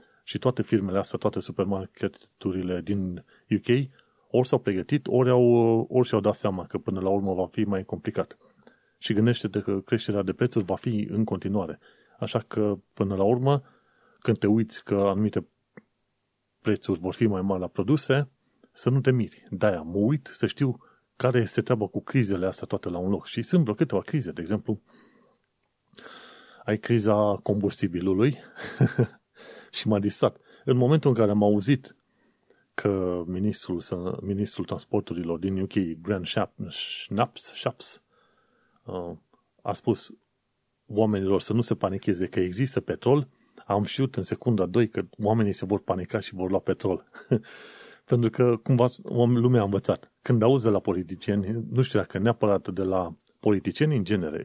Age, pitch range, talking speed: 30-49, 95-120 Hz, 155 wpm